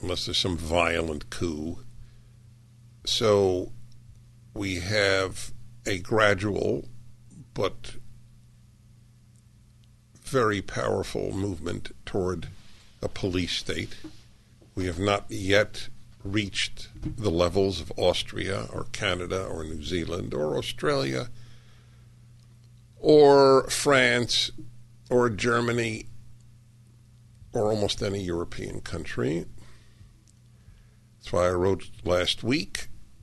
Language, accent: English, American